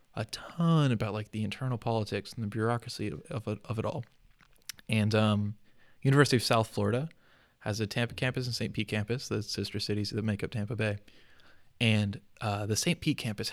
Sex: male